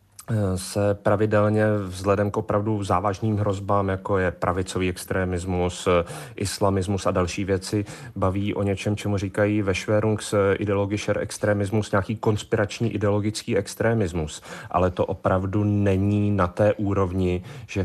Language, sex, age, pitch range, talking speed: Czech, male, 30-49, 100-115 Hz, 120 wpm